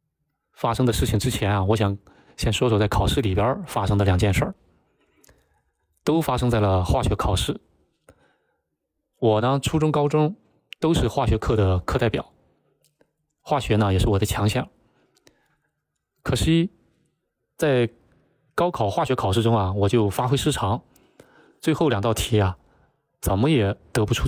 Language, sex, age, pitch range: Chinese, male, 20-39, 105-135 Hz